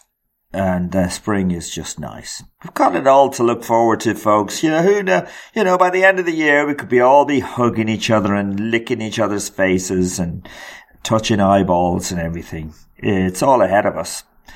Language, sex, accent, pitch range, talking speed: English, male, British, 95-135 Hz, 205 wpm